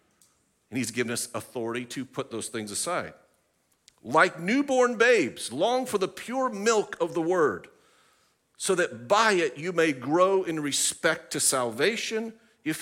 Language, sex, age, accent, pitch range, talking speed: English, male, 50-69, American, 145-205 Hz, 155 wpm